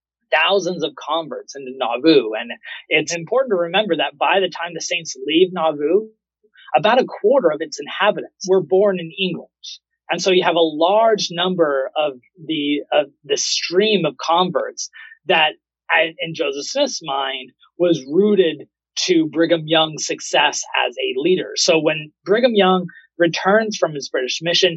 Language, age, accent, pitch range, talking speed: English, 20-39, American, 155-210 Hz, 160 wpm